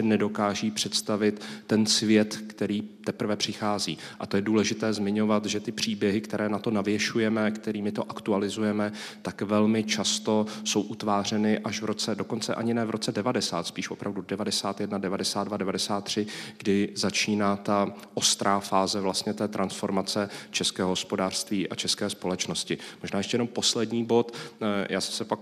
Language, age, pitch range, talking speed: Czech, 30-49, 95-105 Hz, 150 wpm